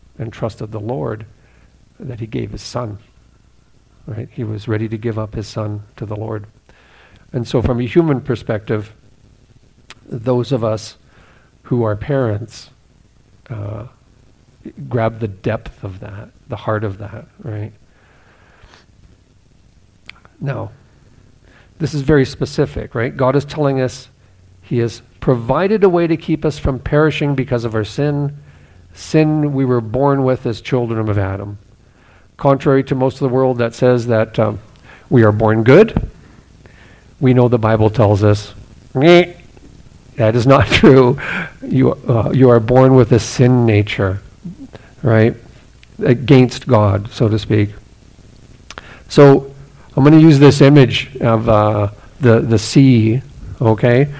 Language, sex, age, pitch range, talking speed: English, male, 50-69, 110-130 Hz, 145 wpm